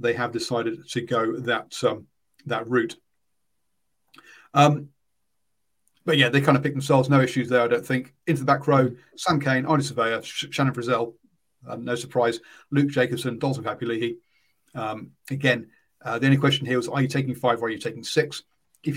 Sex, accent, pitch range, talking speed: male, British, 120-140 Hz, 185 wpm